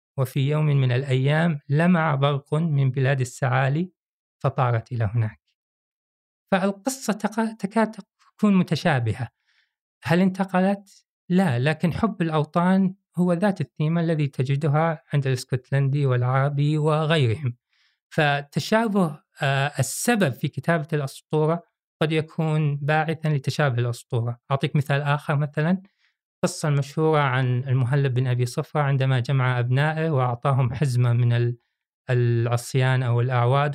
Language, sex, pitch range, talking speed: Arabic, male, 135-170 Hz, 110 wpm